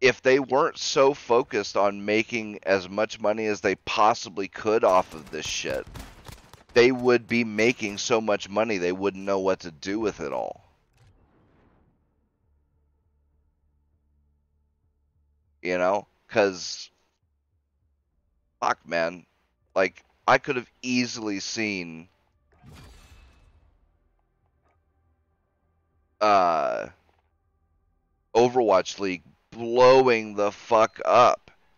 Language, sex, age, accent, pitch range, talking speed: English, male, 30-49, American, 80-115 Hz, 100 wpm